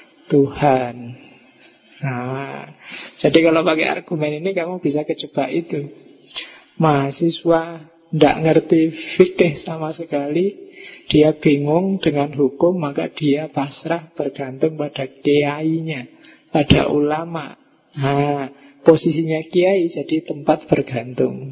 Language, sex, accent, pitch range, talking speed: Indonesian, male, native, 145-170 Hz, 100 wpm